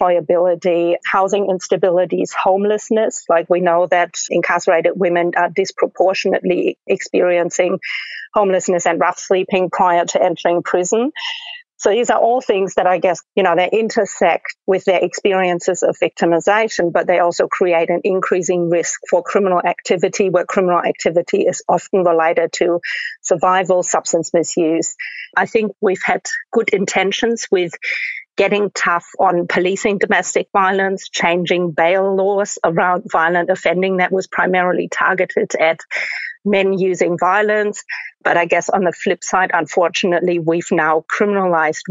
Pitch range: 175-200 Hz